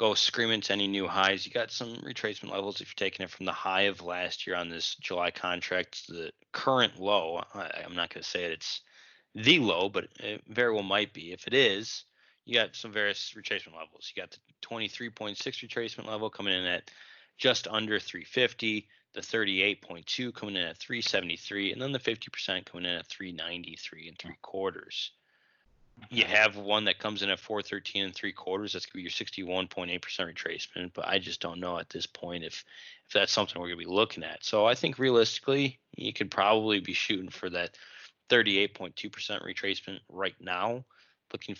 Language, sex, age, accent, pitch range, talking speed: English, male, 20-39, American, 90-110 Hz, 190 wpm